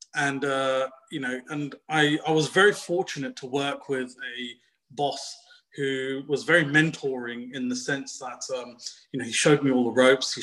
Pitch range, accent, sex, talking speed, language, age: 135-175 Hz, British, male, 190 wpm, English, 30-49